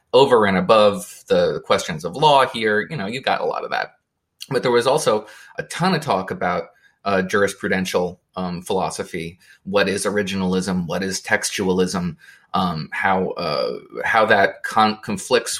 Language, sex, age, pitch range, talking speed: English, male, 30-49, 95-140 Hz, 160 wpm